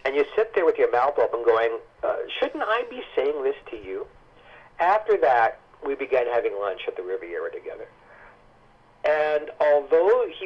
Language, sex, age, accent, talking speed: English, male, 50-69, American, 170 wpm